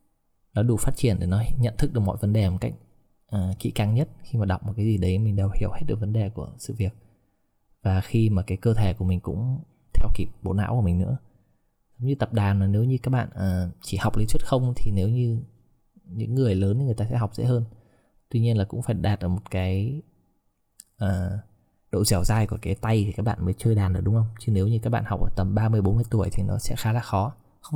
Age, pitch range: 20-39, 95-115 Hz